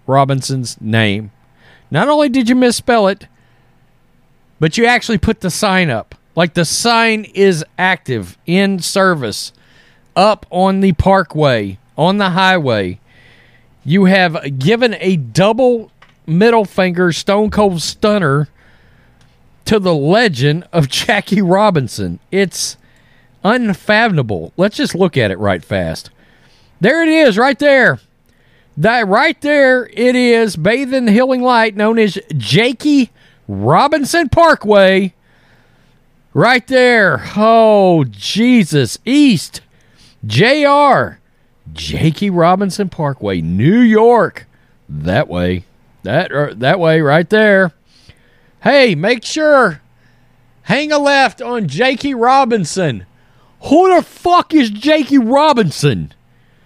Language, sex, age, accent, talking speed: English, male, 40-59, American, 115 wpm